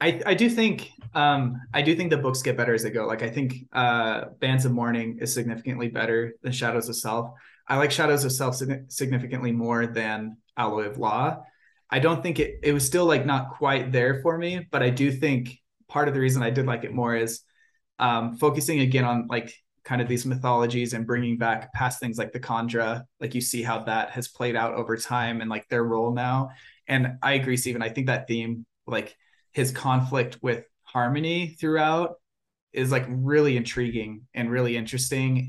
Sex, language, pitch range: male, English, 120-145 Hz